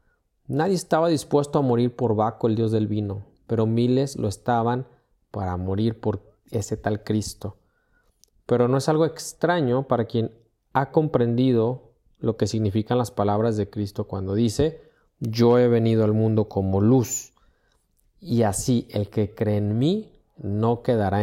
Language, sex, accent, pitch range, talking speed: Spanish, male, Mexican, 105-125 Hz, 155 wpm